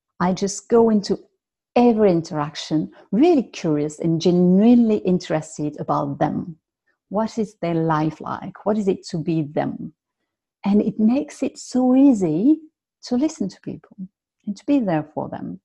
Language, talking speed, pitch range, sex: English, 155 wpm, 170-230 Hz, female